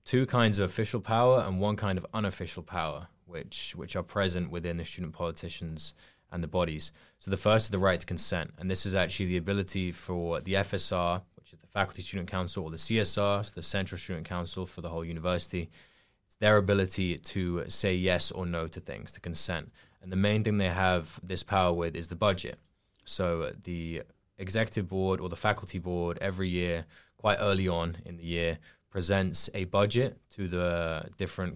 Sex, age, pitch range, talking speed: male, 20-39, 85-100 Hz, 195 wpm